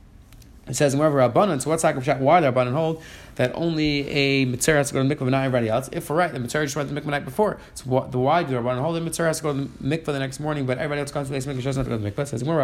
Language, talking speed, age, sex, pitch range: English, 325 wpm, 30-49, male, 135-170 Hz